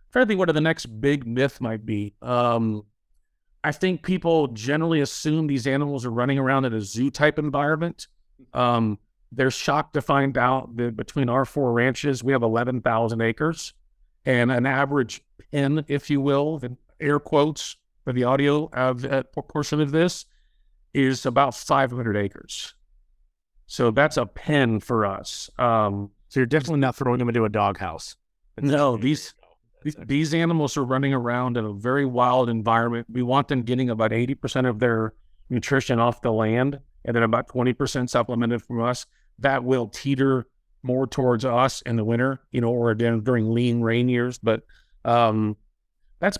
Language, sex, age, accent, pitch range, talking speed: English, male, 50-69, American, 115-140 Hz, 165 wpm